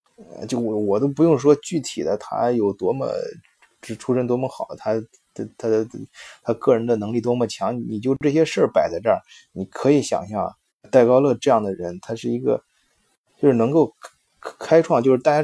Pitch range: 110-150 Hz